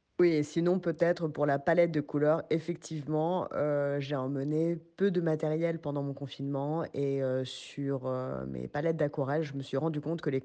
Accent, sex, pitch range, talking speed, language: French, female, 145-170 Hz, 190 wpm, French